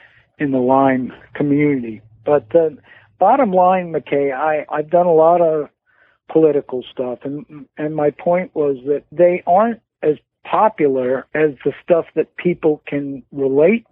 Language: English